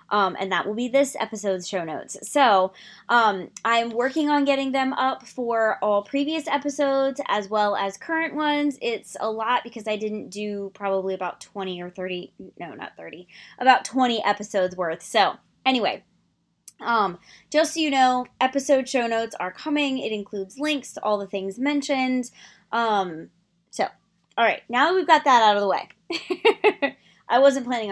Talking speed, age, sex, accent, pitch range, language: 175 wpm, 20-39, female, American, 195-285 Hz, English